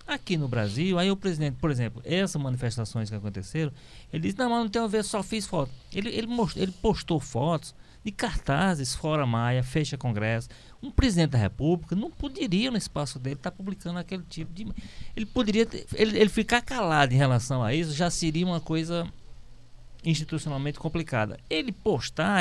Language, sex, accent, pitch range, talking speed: Portuguese, male, Brazilian, 125-180 Hz, 170 wpm